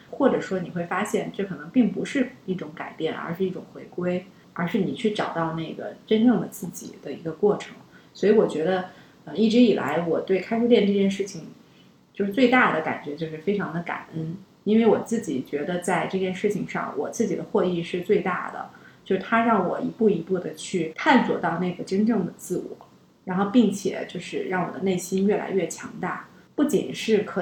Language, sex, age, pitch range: Chinese, female, 30-49, 175-220 Hz